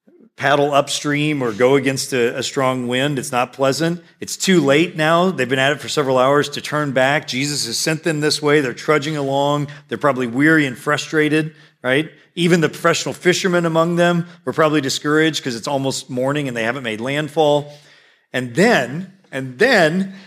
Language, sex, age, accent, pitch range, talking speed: English, male, 40-59, American, 125-160 Hz, 185 wpm